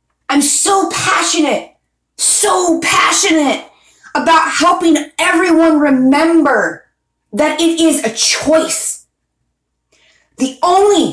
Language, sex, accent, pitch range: English, female, American, 260-330 Hz